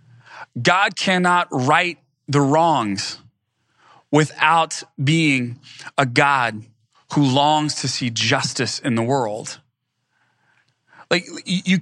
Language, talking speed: English, 95 wpm